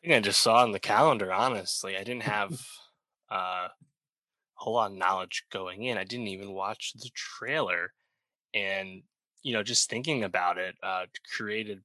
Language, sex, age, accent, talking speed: English, male, 10-29, American, 175 wpm